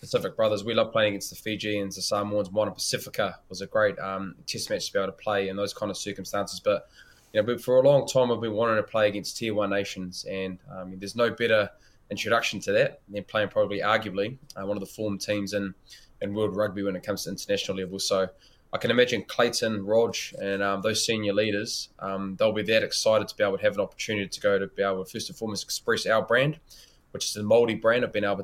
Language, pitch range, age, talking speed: English, 100-115 Hz, 20-39, 245 wpm